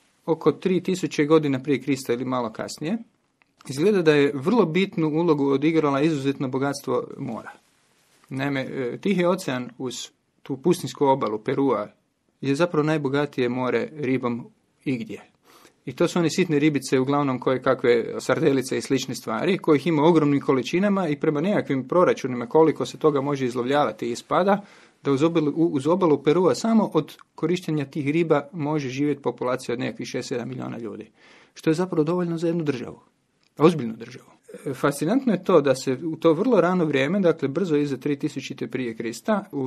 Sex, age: male, 30-49